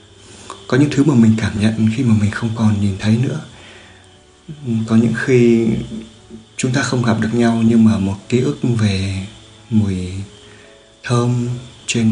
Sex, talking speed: male, 165 wpm